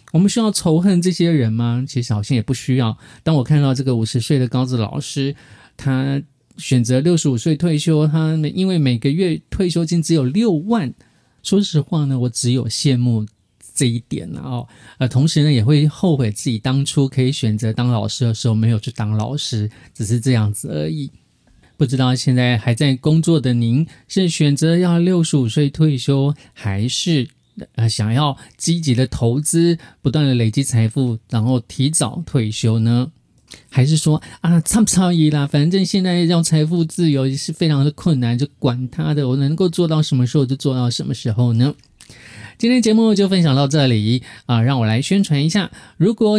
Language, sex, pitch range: Chinese, male, 125-170 Hz